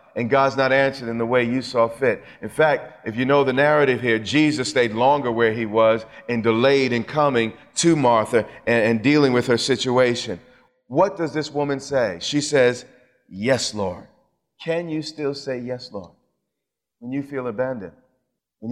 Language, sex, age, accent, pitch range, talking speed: English, male, 40-59, American, 115-145 Hz, 180 wpm